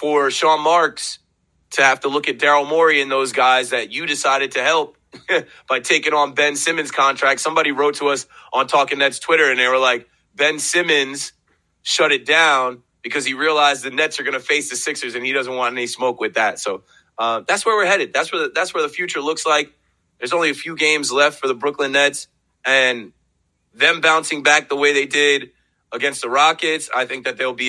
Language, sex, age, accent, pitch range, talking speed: English, male, 30-49, American, 120-145 Hz, 215 wpm